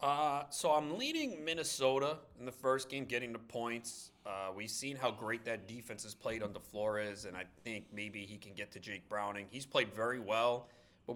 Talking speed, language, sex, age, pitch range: 215 wpm, English, male, 30-49, 105-130 Hz